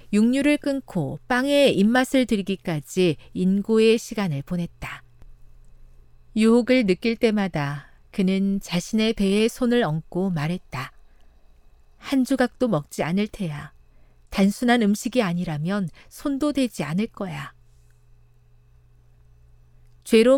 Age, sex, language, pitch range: 40-59, female, Korean, 145-225 Hz